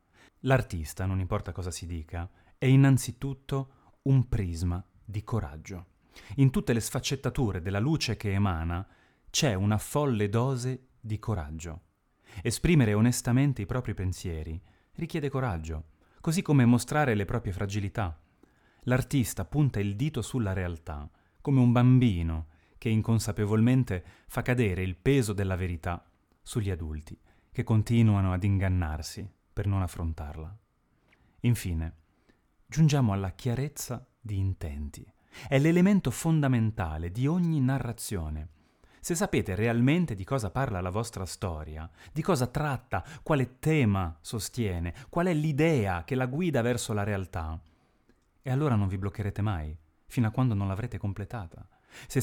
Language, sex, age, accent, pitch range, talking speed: Italian, male, 30-49, native, 90-130 Hz, 130 wpm